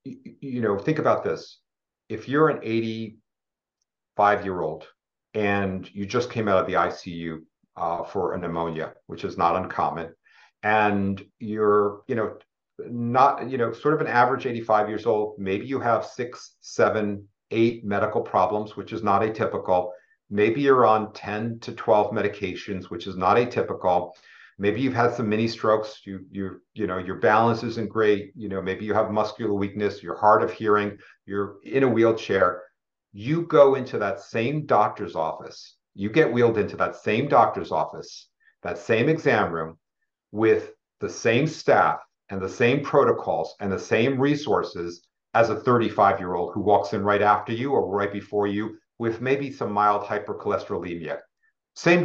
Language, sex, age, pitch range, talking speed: English, male, 50-69, 100-125 Hz, 165 wpm